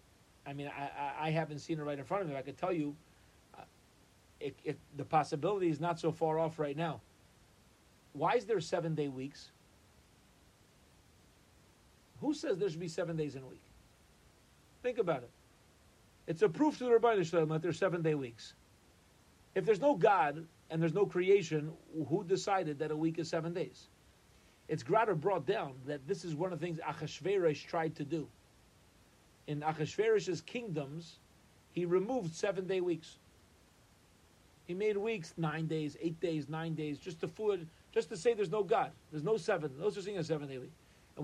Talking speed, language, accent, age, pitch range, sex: 180 wpm, English, American, 40-59, 150-190 Hz, male